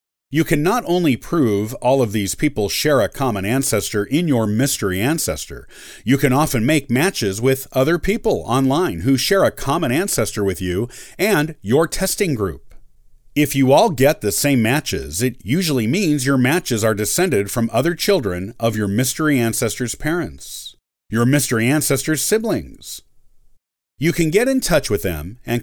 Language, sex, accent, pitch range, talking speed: English, male, American, 105-150 Hz, 165 wpm